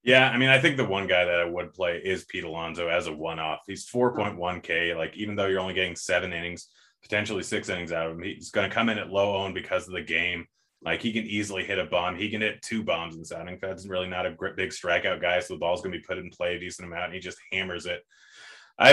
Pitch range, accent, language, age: 85-105 Hz, American, English, 30-49